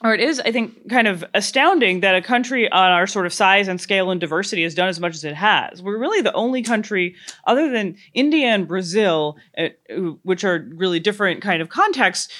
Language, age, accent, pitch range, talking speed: English, 30-49, American, 170-235 Hz, 215 wpm